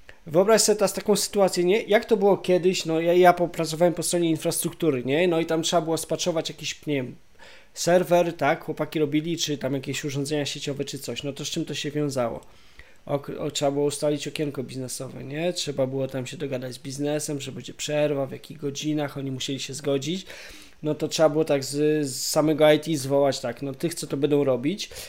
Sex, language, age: male, Polish, 20-39